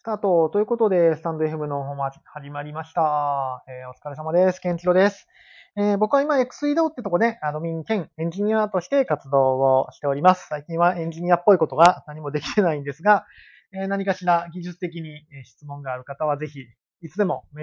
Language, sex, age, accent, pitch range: Japanese, male, 20-39, native, 145-200 Hz